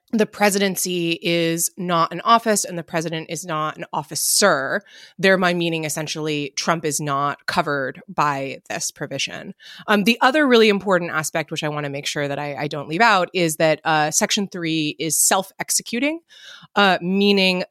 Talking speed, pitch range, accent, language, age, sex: 175 wpm, 155-195 Hz, American, English, 20-39, female